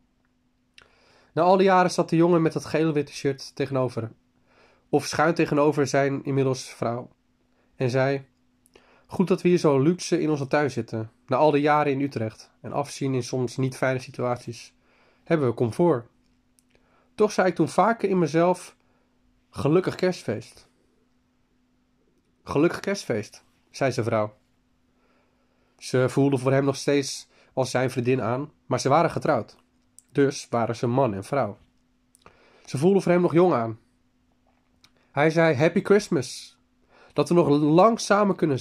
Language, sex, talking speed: Dutch, male, 150 wpm